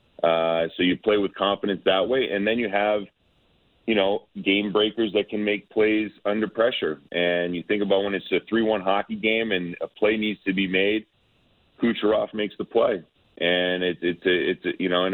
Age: 30-49